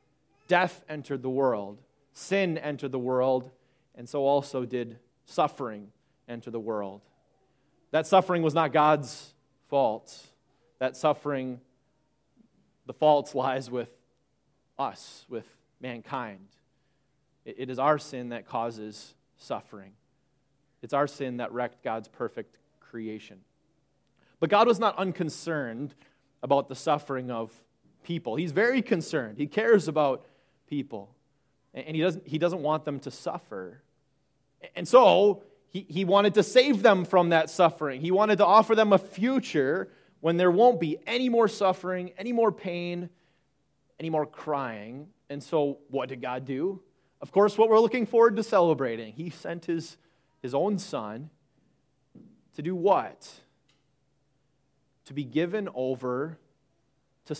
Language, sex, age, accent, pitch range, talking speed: English, male, 30-49, American, 130-180 Hz, 135 wpm